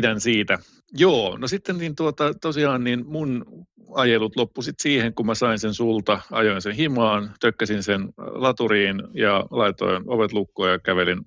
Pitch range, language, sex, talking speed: 105-140 Hz, Finnish, male, 150 wpm